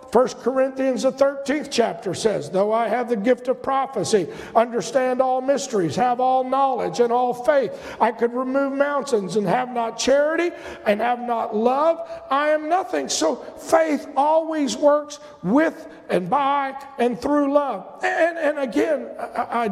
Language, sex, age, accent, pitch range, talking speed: English, male, 50-69, American, 235-295 Hz, 155 wpm